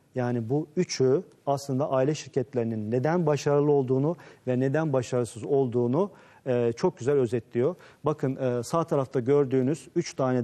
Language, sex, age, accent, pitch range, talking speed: Turkish, male, 40-59, native, 125-155 Hz, 125 wpm